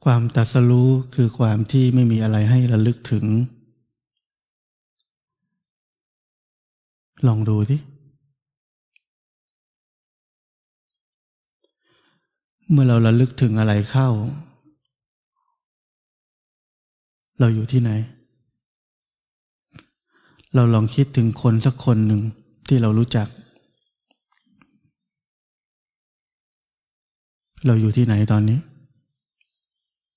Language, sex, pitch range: Thai, male, 110-140 Hz